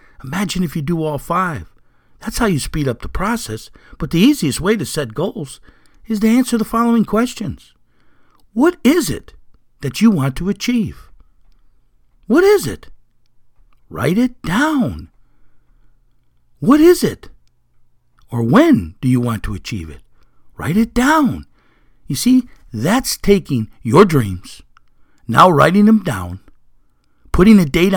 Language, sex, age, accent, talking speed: English, male, 60-79, American, 145 wpm